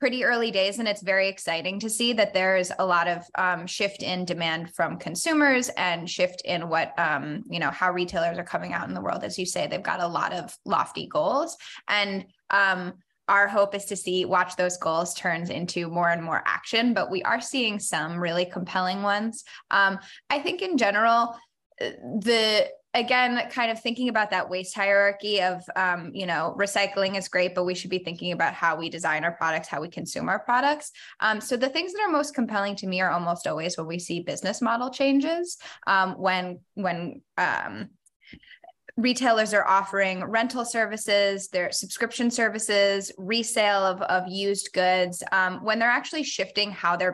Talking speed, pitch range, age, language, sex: 190 wpm, 180-230 Hz, 10-29, English, female